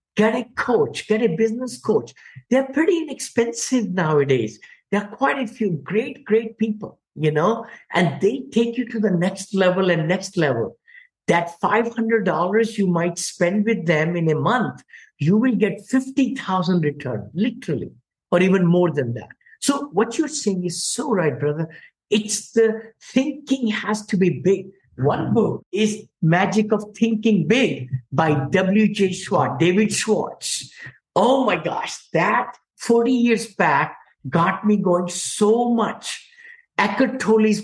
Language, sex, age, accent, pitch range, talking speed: English, male, 50-69, Indian, 170-225 Hz, 150 wpm